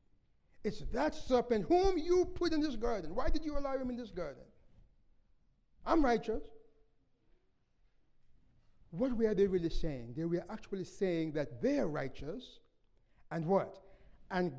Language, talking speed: English, 140 wpm